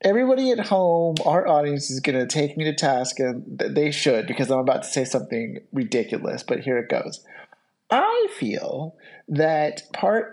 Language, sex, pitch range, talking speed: English, male, 140-210 Hz, 175 wpm